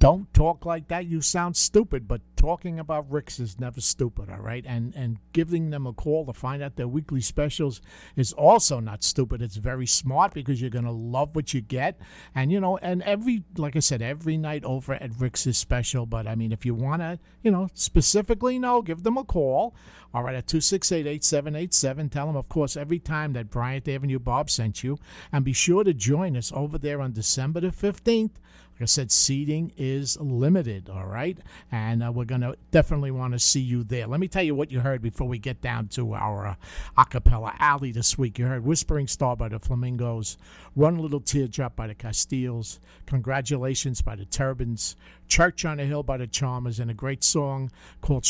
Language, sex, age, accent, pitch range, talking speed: English, male, 50-69, American, 120-155 Hz, 210 wpm